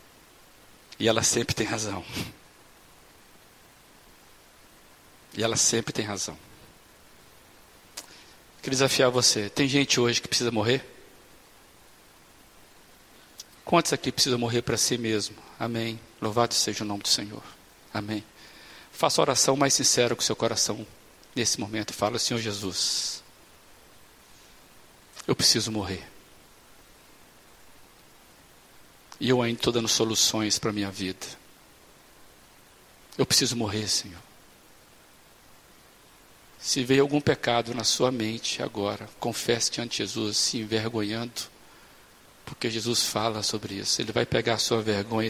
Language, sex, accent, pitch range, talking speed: Portuguese, male, Brazilian, 105-125 Hz, 120 wpm